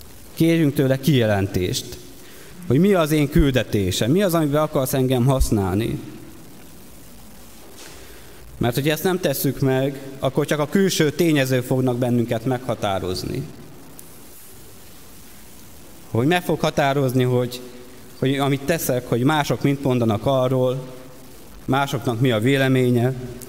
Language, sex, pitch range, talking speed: Hungarian, male, 120-140 Hz, 115 wpm